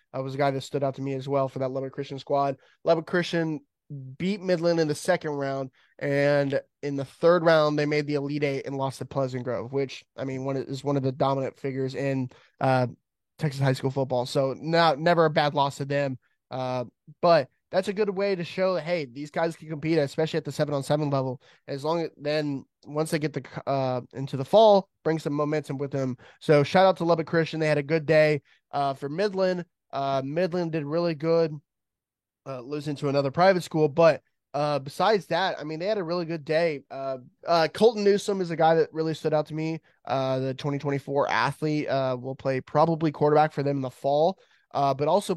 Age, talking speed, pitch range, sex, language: 20-39, 220 wpm, 135-160 Hz, male, English